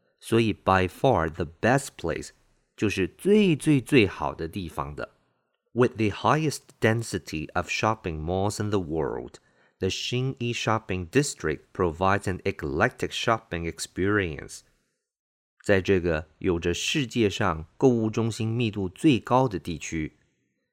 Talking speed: 70 wpm